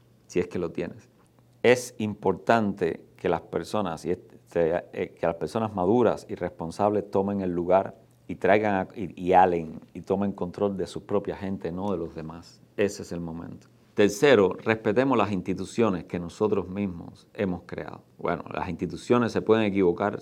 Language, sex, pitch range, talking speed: Spanish, male, 90-110 Hz, 165 wpm